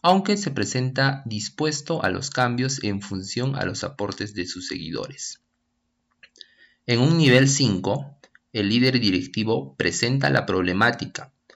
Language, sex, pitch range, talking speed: Spanish, male, 100-135 Hz, 130 wpm